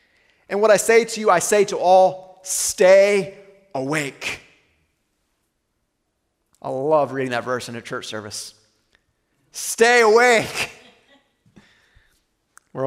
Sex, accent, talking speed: male, American, 110 wpm